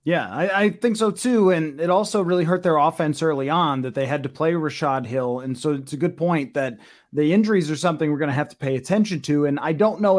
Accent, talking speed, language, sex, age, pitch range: American, 265 wpm, English, male, 30-49, 155-200 Hz